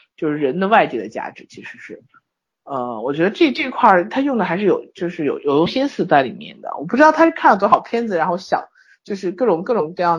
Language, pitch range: Chinese, 160-220 Hz